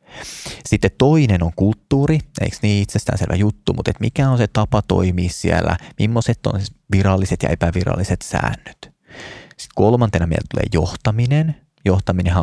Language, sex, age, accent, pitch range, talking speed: Finnish, male, 20-39, native, 90-115 Hz, 140 wpm